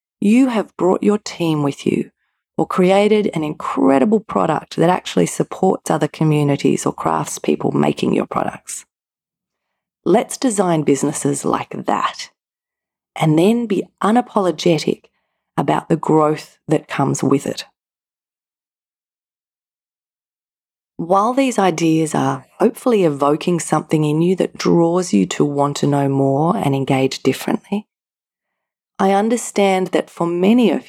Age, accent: 30-49, Australian